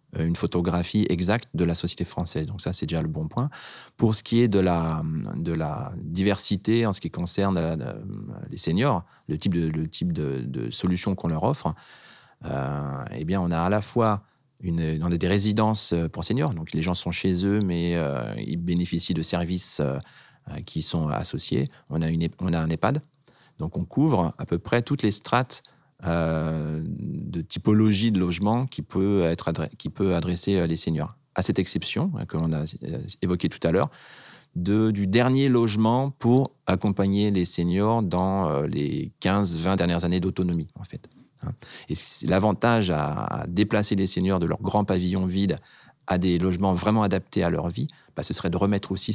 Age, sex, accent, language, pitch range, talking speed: 30-49, male, French, French, 85-105 Hz, 180 wpm